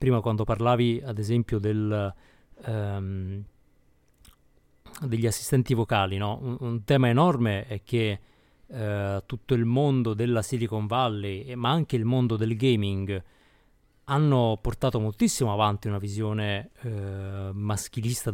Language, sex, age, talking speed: Italian, male, 30-49, 130 wpm